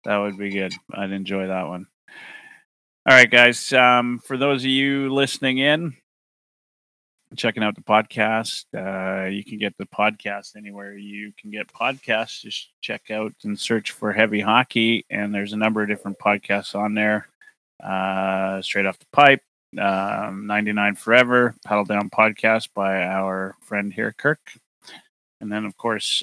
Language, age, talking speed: English, 20-39, 160 wpm